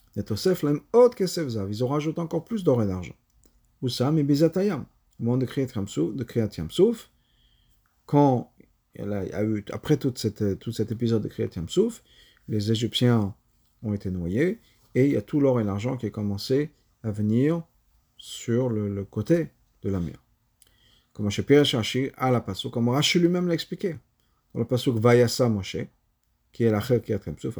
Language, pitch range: French, 105-145 Hz